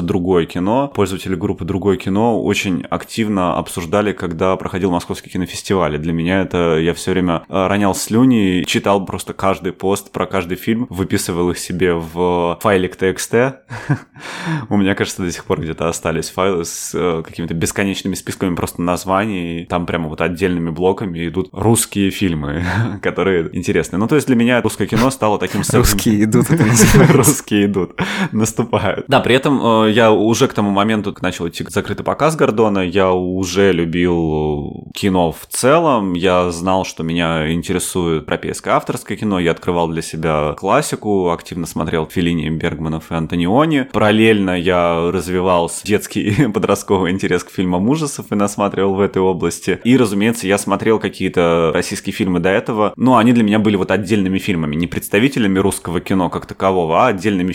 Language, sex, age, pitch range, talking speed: Russian, male, 20-39, 85-105 Hz, 155 wpm